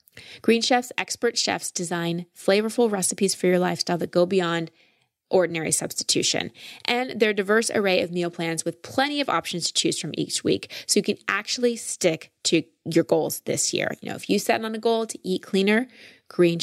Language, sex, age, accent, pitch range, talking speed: English, female, 20-39, American, 175-235 Hz, 200 wpm